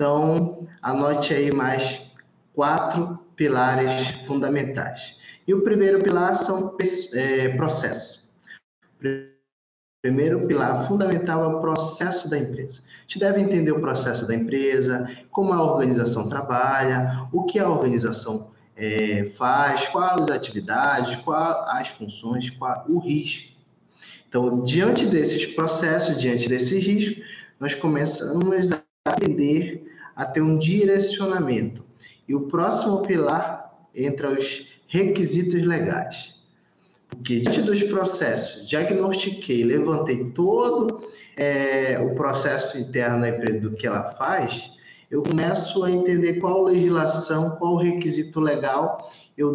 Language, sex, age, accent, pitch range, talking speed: Portuguese, male, 20-39, Brazilian, 130-175 Hz, 115 wpm